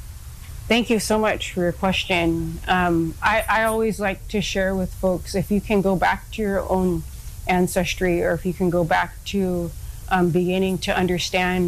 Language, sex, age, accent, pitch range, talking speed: English, female, 30-49, American, 175-200 Hz, 185 wpm